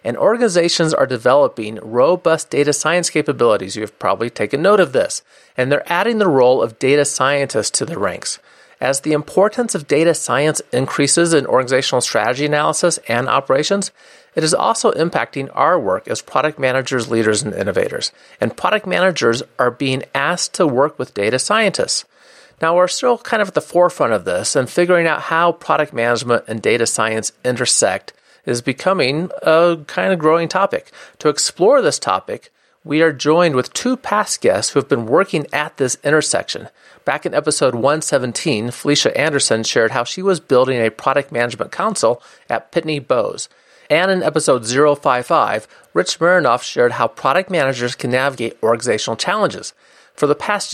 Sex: male